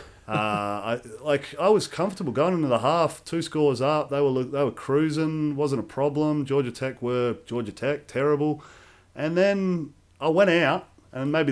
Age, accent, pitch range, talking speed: 30-49, Australian, 105-155 Hz, 175 wpm